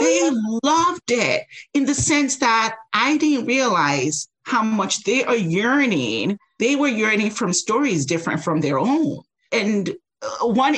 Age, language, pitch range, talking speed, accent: 40-59, English, 160-240 Hz, 145 wpm, American